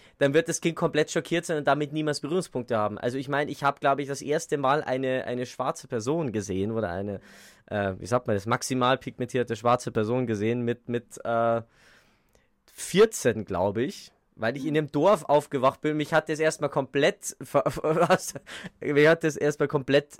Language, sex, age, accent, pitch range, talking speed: German, male, 20-39, German, 120-150 Hz, 185 wpm